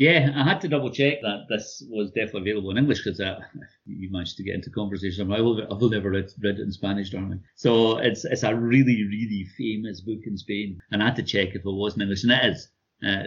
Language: English